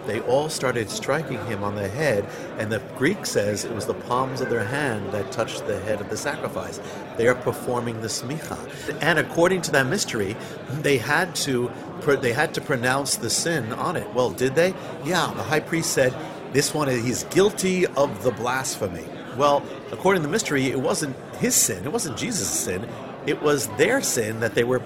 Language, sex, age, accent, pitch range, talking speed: English, male, 50-69, American, 125-165 Hz, 200 wpm